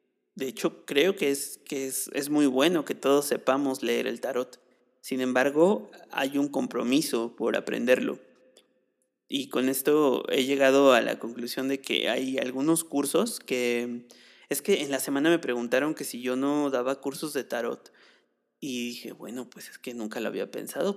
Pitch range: 120-140 Hz